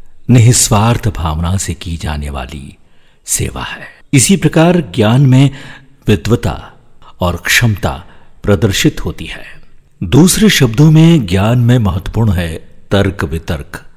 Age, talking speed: 50-69, 115 wpm